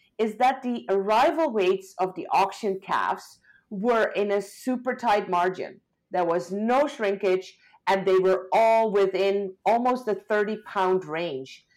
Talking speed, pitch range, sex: 150 wpm, 185-225 Hz, female